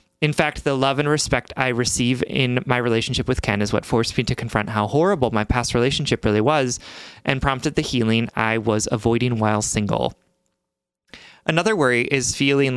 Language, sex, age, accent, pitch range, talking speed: English, male, 30-49, American, 110-140 Hz, 185 wpm